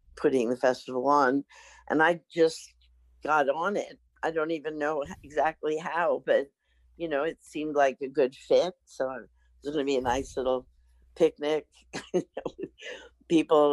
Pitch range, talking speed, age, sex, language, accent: 130-170 Hz, 165 wpm, 60-79, female, English, American